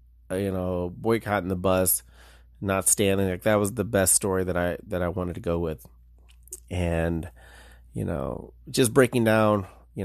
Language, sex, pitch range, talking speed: English, male, 85-115 Hz, 165 wpm